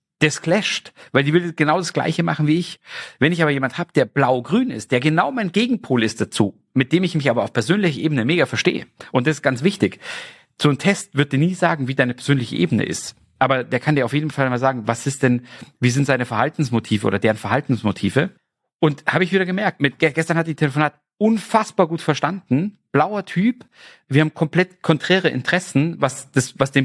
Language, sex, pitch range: German, male, 130-165 Hz